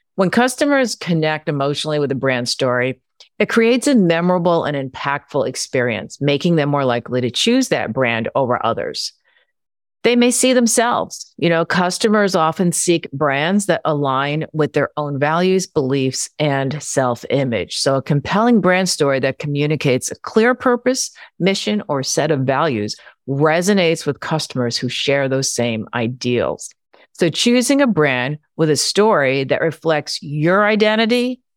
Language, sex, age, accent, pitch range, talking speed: English, female, 50-69, American, 135-200 Hz, 150 wpm